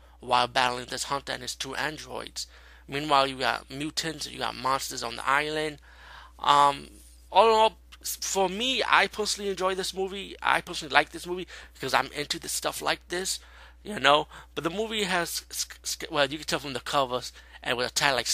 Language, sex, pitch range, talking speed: English, male, 115-180 Hz, 195 wpm